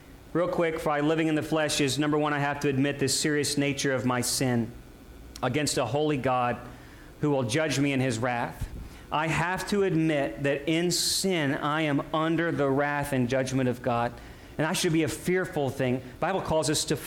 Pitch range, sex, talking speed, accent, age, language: 135-165 Hz, male, 210 wpm, American, 40-59, English